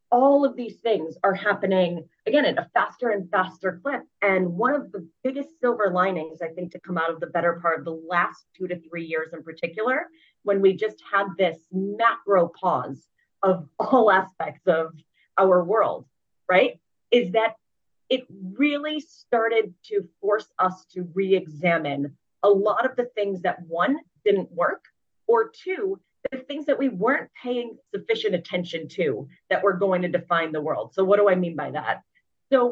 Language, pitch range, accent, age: English, 175-245 Hz, American, 30-49